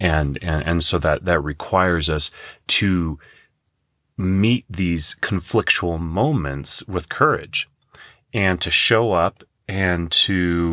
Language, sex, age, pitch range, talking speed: English, male, 30-49, 75-90 Hz, 115 wpm